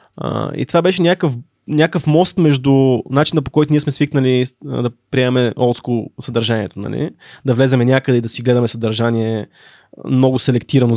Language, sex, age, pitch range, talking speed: Bulgarian, male, 20-39, 120-145 Hz, 155 wpm